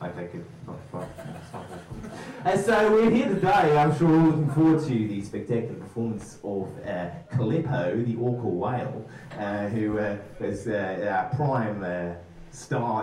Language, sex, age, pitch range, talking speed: English, male, 30-49, 110-160 Hz, 145 wpm